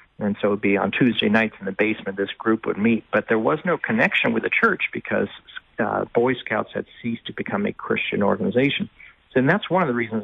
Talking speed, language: 235 wpm, English